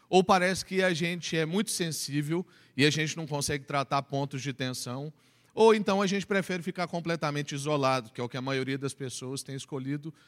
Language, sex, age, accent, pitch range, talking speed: Portuguese, male, 40-59, Brazilian, 135-175 Hz, 205 wpm